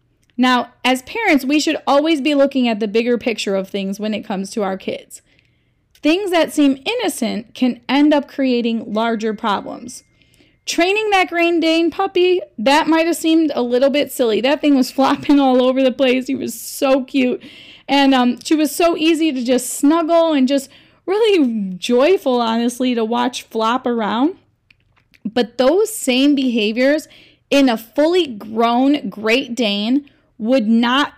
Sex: female